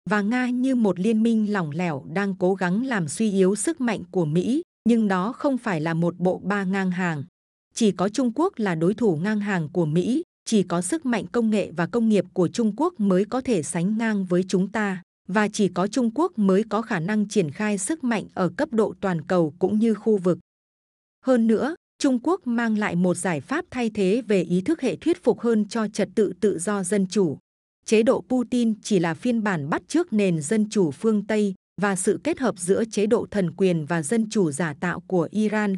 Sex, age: female, 20-39